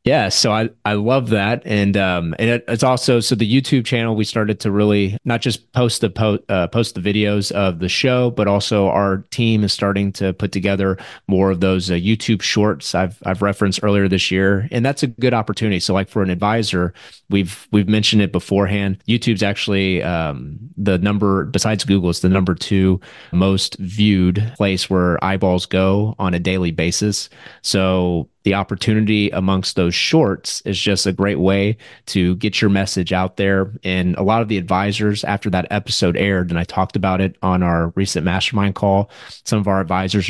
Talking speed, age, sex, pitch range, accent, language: 195 wpm, 30-49, male, 95-105 Hz, American, English